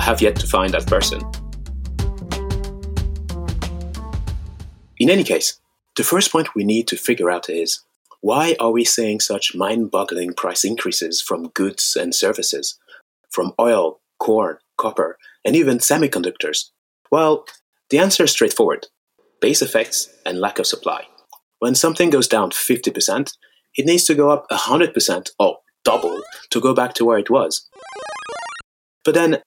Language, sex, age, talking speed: English, male, 30-49, 145 wpm